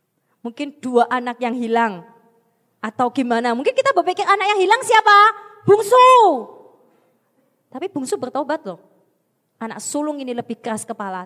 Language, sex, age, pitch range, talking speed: Indonesian, female, 20-39, 210-285 Hz, 135 wpm